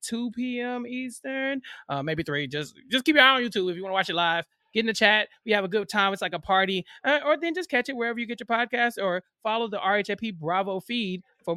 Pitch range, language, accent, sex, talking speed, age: 170-220 Hz, English, American, male, 265 wpm, 20-39